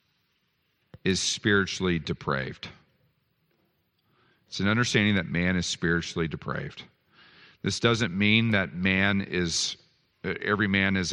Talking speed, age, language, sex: 110 wpm, 40-59, English, male